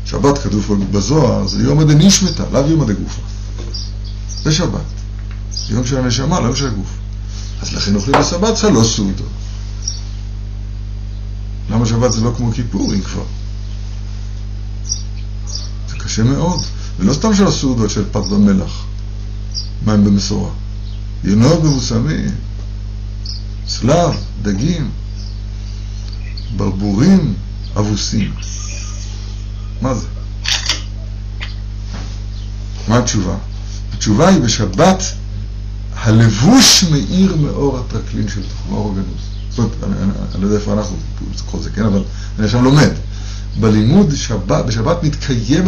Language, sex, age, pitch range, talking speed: Hebrew, male, 60-79, 100-120 Hz, 115 wpm